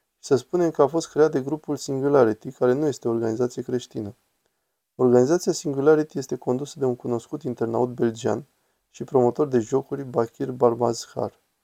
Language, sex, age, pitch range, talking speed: Romanian, male, 20-39, 120-140 Hz, 155 wpm